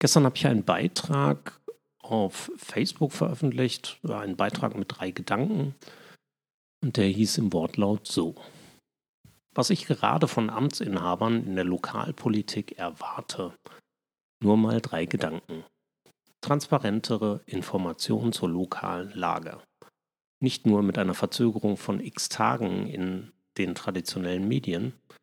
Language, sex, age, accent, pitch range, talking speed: German, male, 40-59, German, 95-140 Hz, 115 wpm